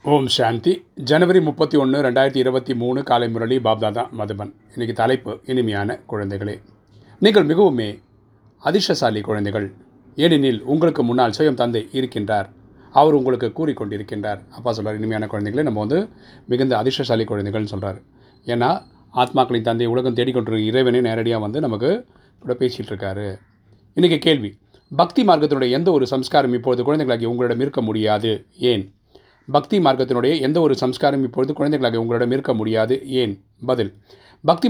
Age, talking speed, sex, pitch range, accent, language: 30-49, 130 wpm, male, 110-140 Hz, native, Tamil